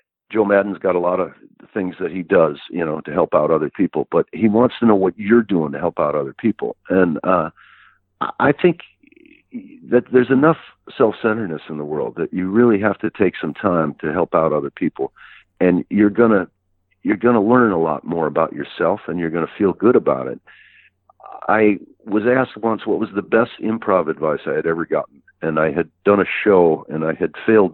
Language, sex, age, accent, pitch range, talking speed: English, male, 50-69, American, 80-110 Hz, 215 wpm